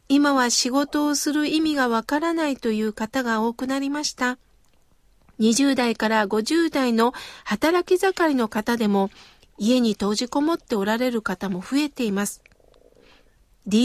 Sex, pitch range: female, 230-300 Hz